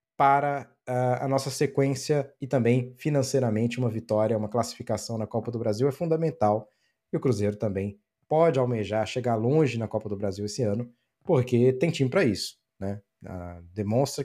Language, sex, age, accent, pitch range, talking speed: Portuguese, male, 20-39, Brazilian, 115-140 Hz, 170 wpm